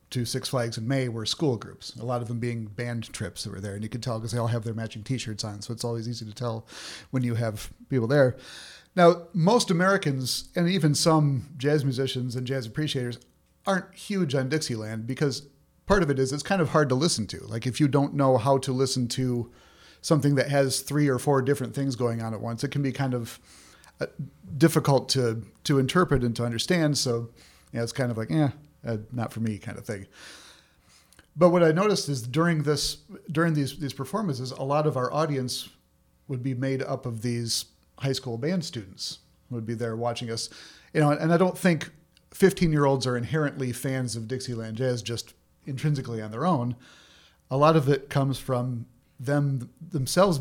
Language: English